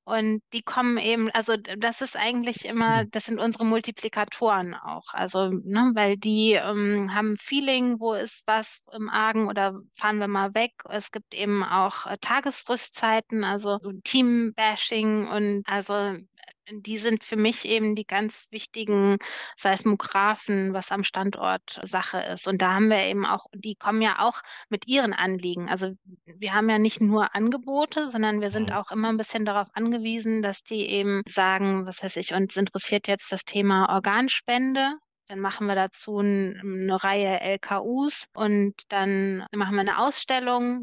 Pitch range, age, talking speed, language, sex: 195-225 Hz, 20-39, 160 wpm, German, female